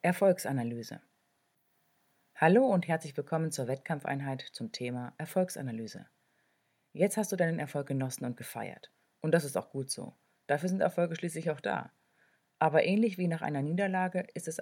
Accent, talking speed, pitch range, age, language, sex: German, 155 wpm, 140-175 Hz, 30-49, German, female